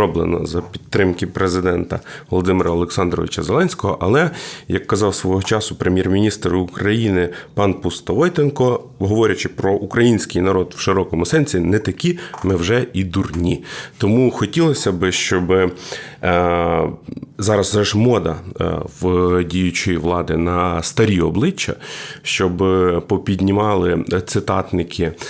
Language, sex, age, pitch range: Ukrainian, male, 30-49, 90-115 Hz